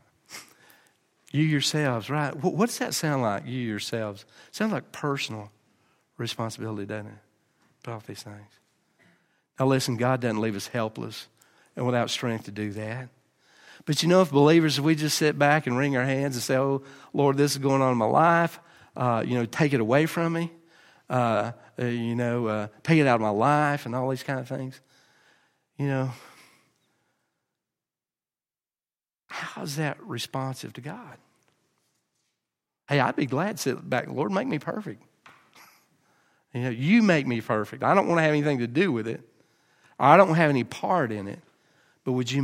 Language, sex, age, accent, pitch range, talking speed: English, male, 50-69, American, 115-150 Hz, 180 wpm